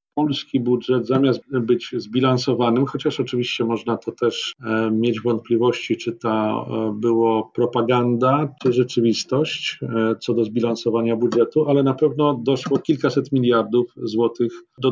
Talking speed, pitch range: 120 wpm, 120-140 Hz